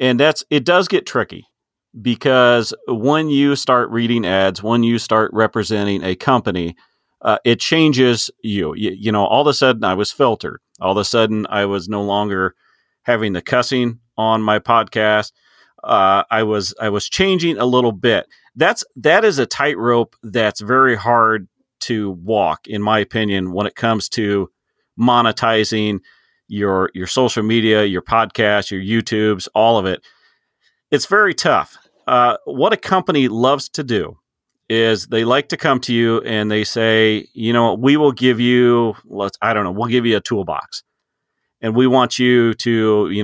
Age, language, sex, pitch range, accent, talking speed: 40-59, English, male, 105-125 Hz, American, 175 wpm